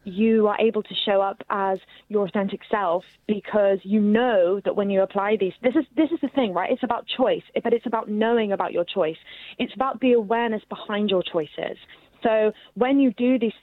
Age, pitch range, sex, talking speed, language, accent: 20-39, 190-235 Hz, female, 205 wpm, English, British